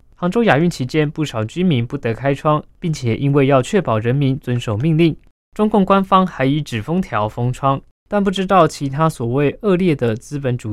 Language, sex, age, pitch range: Chinese, male, 20-39, 125-170 Hz